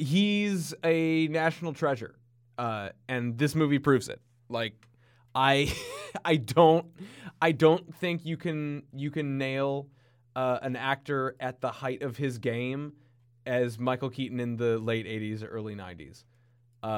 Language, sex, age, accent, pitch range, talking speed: English, male, 20-39, American, 120-160 Hz, 150 wpm